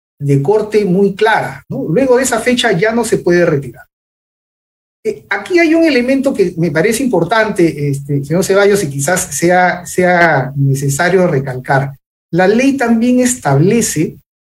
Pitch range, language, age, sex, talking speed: 150-245 Hz, Spanish, 50-69, male, 150 wpm